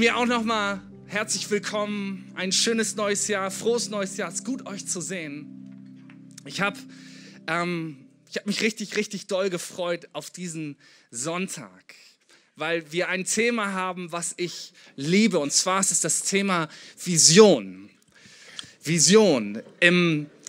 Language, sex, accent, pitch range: German, male, German, 155-200 Hz